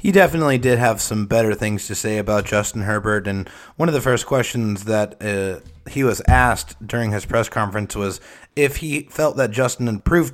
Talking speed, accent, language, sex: 205 wpm, American, English, male